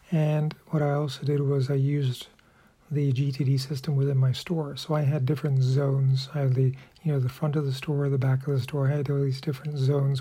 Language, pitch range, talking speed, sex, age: English, 135-150 Hz, 235 wpm, male, 40-59